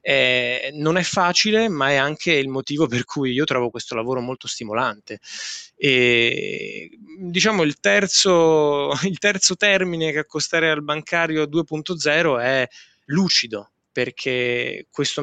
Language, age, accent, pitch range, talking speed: Italian, 20-39, native, 130-160 Hz, 130 wpm